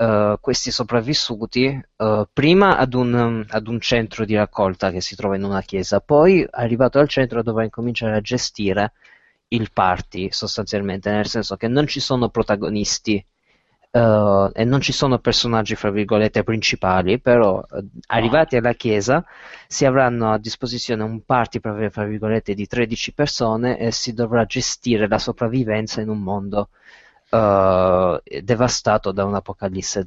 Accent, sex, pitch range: native, male, 105-130 Hz